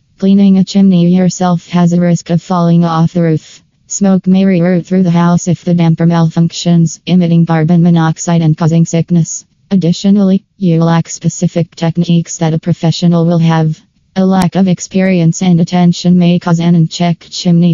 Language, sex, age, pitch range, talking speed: English, female, 20-39, 165-175 Hz, 165 wpm